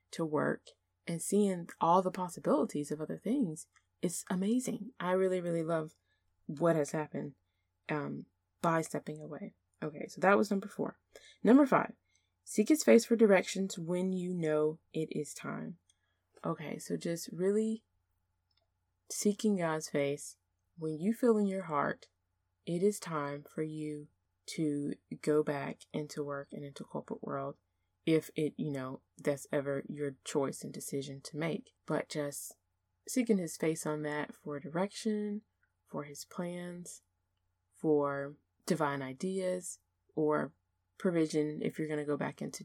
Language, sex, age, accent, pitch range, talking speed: English, female, 20-39, American, 145-190 Hz, 150 wpm